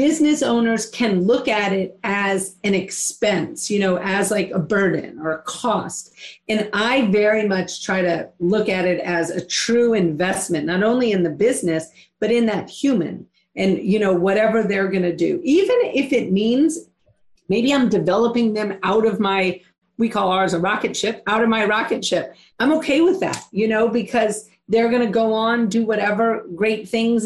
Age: 40-59